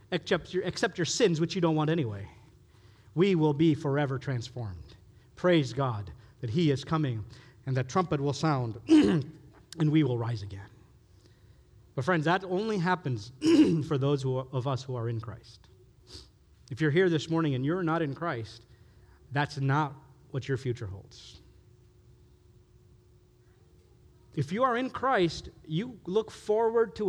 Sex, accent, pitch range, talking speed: male, American, 115-160 Hz, 155 wpm